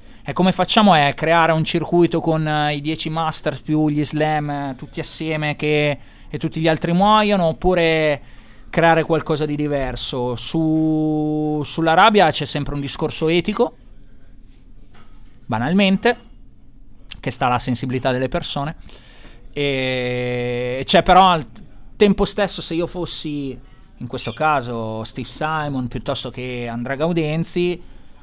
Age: 30-49